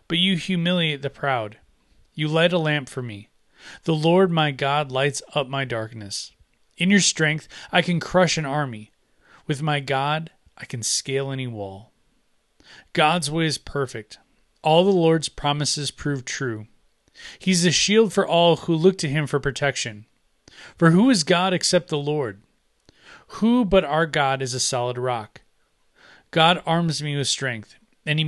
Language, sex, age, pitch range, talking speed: English, male, 30-49, 130-170 Hz, 165 wpm